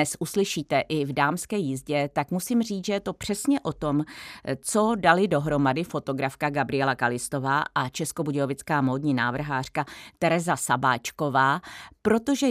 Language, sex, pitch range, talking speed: Czech, female, 135-185 Hz, 135 wpm